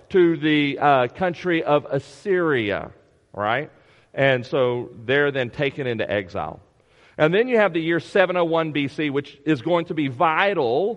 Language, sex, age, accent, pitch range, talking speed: English, male, 40-59, American, 135-170 Hz, 155 wpm